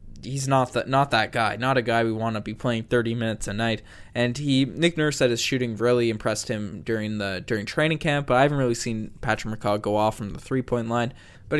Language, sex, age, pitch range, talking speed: English, male, 20-39, 115-145 Hz, 245 wpm